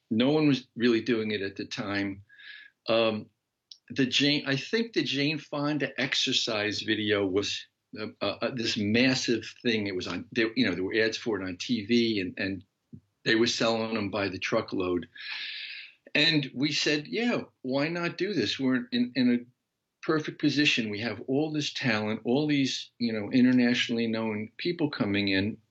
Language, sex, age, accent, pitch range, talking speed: English, male, 50-69, American, 115-135 Hz, 175 wpm